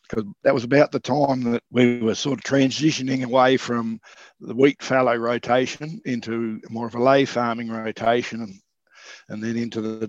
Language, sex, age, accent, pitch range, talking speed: English, male, 60-79, Australian, 115-130 Hz, 180 wpm